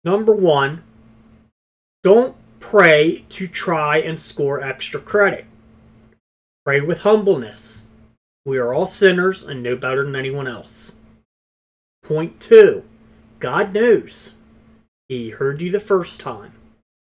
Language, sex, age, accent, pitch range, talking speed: English, male, 30-49, American, 120-180 Hz, 115 wpm